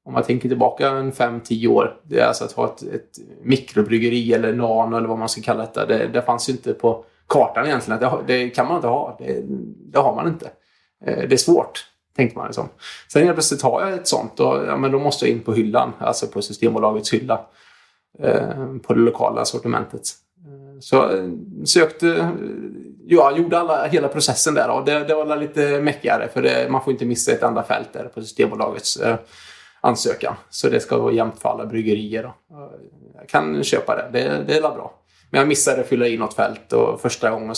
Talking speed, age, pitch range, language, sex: 200 wpm, 20-39, 115-155 Hz, Swedish, male